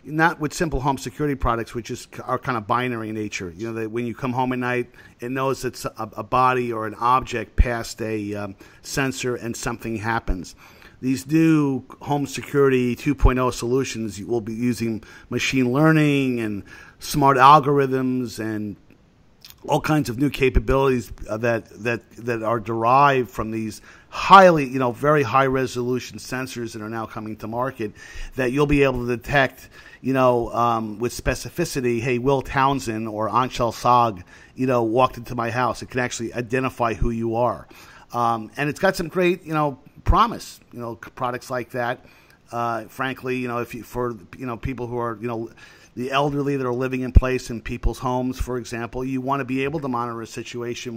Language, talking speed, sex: English, 185 wpm, male